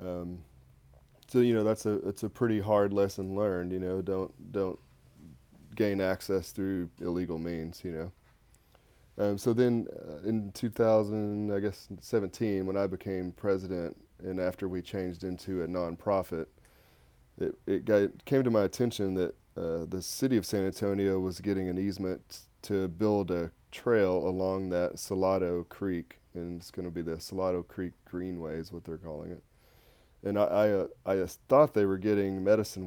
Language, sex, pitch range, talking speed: English, male, 85-100 Hz, 170 wpm